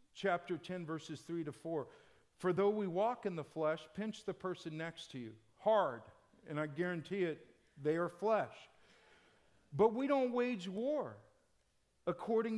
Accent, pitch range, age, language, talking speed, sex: American, 165-220 Hz, 50-69, English, 155 wpm, male